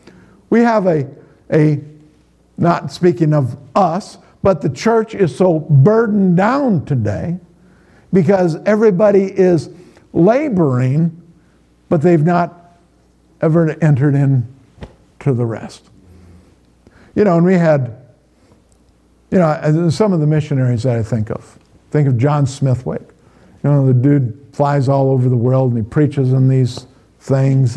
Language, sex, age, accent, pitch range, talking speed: English, male, 50-69, American, 125-155 Hz, 135 wpm